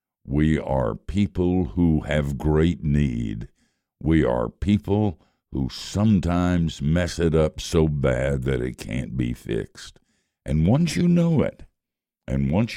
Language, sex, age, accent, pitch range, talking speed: English, male, 60-79, American, 70-95 Hz, 135 wpm